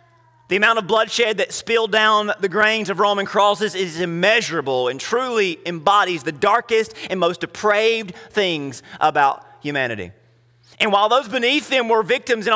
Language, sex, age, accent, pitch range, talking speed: English, male, 30-49, American, 185-240 Hz, 160 wpm